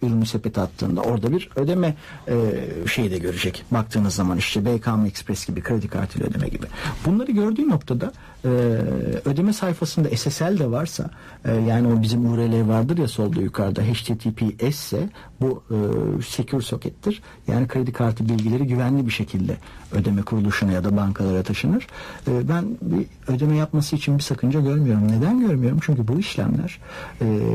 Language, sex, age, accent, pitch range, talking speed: Turkish, male, 60-79, native, 110-140 Hz, 155 wpm